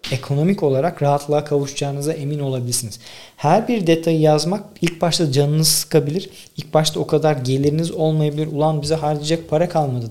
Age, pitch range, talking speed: 40-59, 125-160 Hz, 150 wpm